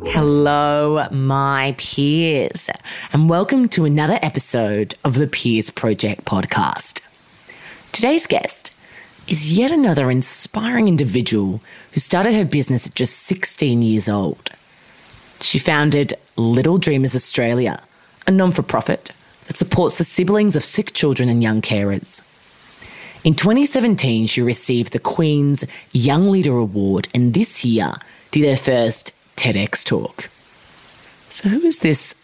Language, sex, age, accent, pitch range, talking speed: English, female, 20-39, Australian, 115-160 Hz, 125 wpm